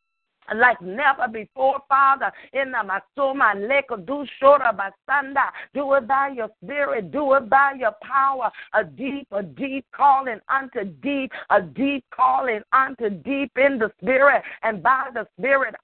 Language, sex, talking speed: English, female, 135 wpm